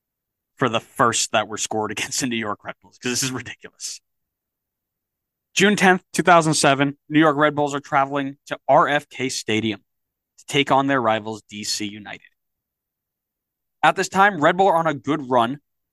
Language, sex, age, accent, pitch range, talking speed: English, male, 20-39, American, 110-155 Hz, 170 wpm